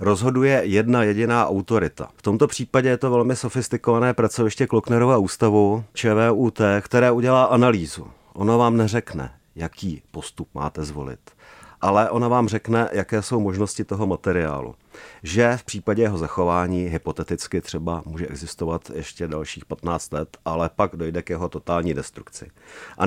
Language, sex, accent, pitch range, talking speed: Czech, male, native, 95-120 Hz, 145 wpm